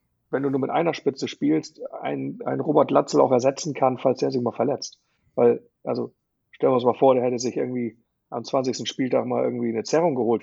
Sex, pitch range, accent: male, 120-135 Hz, German